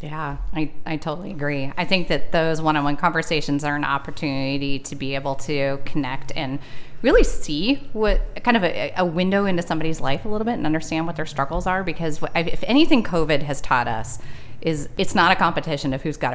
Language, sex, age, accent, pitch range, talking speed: English, female, 30-49, American, 140-170 Hz, 200 wpm